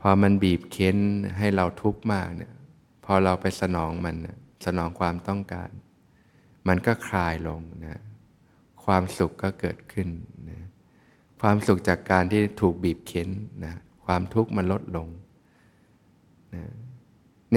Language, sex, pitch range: Thai, male, 90-105 Hz